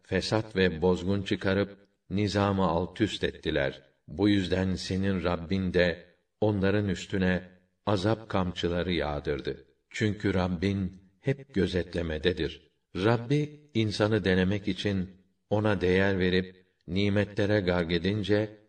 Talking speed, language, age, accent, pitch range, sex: 95 wpm, Turkish, 60-79, native, 90-105 Hz, male